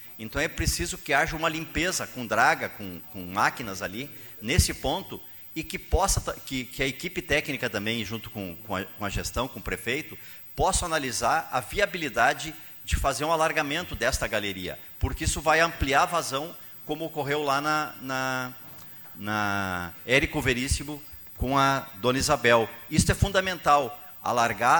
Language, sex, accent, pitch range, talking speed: Portuguese, male, Brazilian, 110-150 Hz, 160 wpm